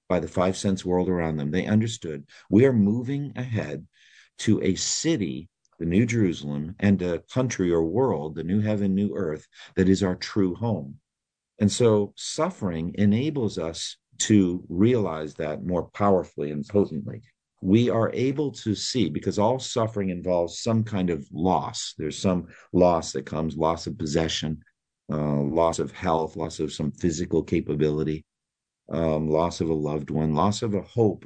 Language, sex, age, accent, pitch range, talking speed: English, male, 50-69, American, 80-105 Hz, 165 wpm